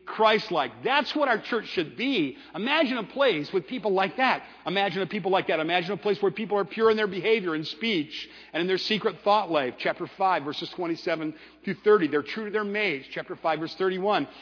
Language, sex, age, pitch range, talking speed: English, male, 50-69, 165-225 Hz, 215 wpm